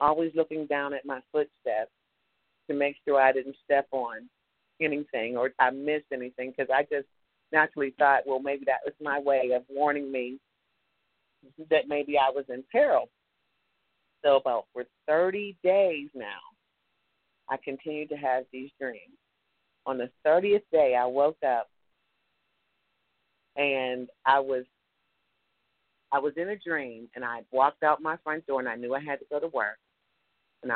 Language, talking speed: English, 160 wpm